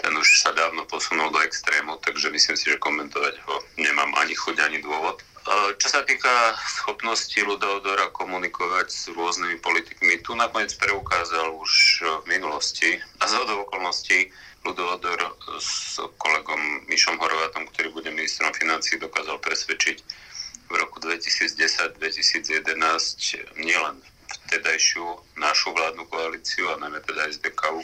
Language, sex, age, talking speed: Slovak, male, 30-49, 125 wpm